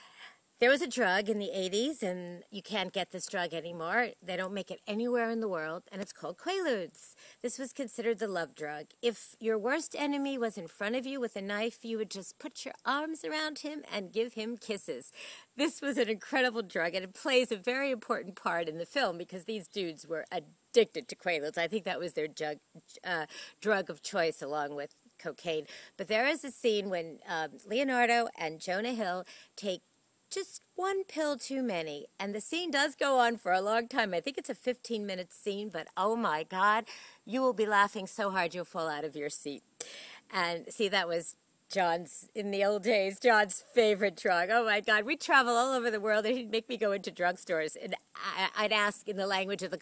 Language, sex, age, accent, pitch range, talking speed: English, female, 40-59, American, 180-240 Hz, 210 wpm